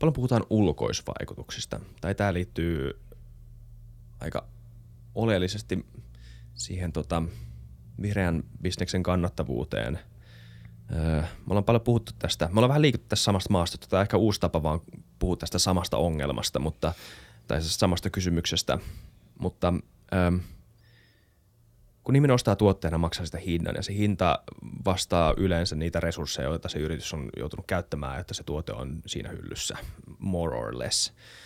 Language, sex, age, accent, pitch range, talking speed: Finnish, male, 30-49, native, 85-105 Hz, 135 wpm